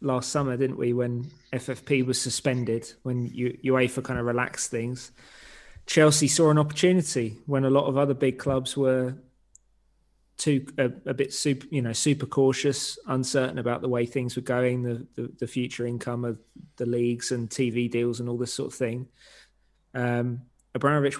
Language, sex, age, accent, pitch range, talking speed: English, male, 20-39, British, 120-130 Hz, 175 wpm